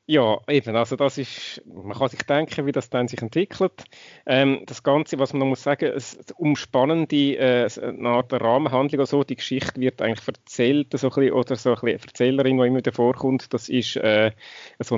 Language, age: German, 30-49